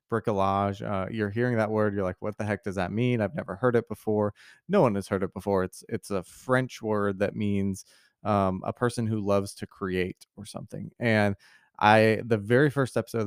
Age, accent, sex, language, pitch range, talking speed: 20-39, American, male, English, 95-115 Hz, 215 wpm